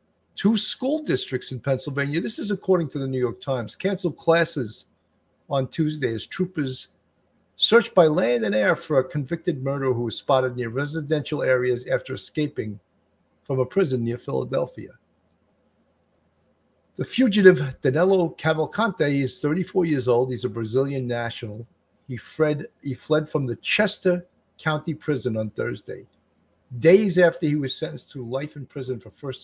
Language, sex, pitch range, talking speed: English, male, 125-160 Hz, 150 wpm